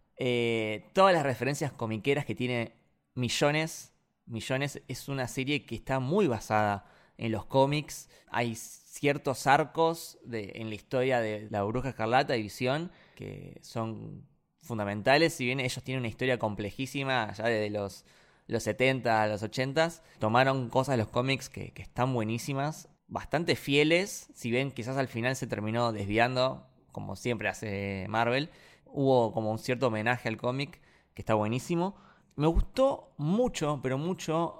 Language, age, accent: Spanish, 20-39, Argentinian